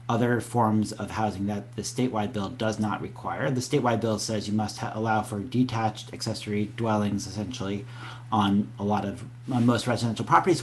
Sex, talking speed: male, 170 wpm